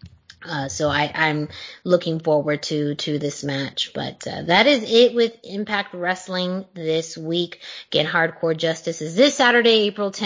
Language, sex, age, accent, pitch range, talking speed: English, female, 30-49, American, 175-220 Hz, 150 wpm